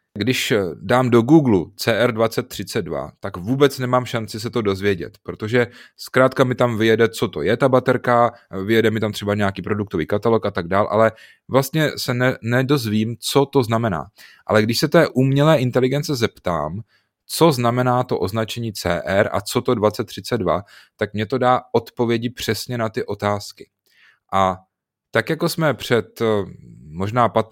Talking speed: 155 wpm